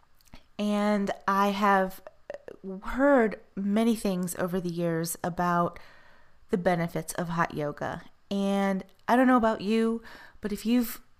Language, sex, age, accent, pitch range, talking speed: English, female, 30-49, American, 180-210 Hz, 130 wpm